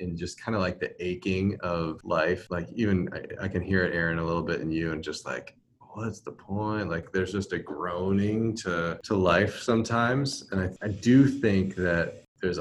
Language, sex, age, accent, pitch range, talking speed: English, male, 20-39, American, 90-115 Hz, 210 wpm